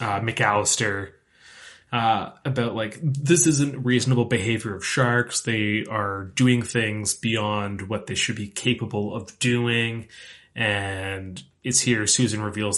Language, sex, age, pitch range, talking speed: English, male, 20-39, 100-120 Hz, 130 wpm